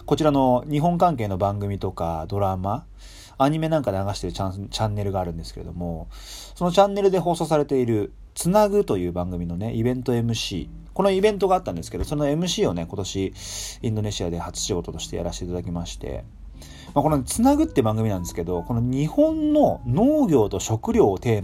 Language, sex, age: Japanese, male, 30-49